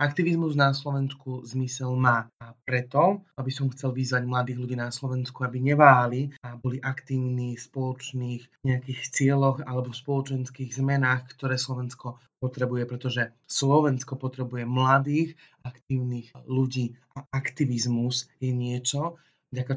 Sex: male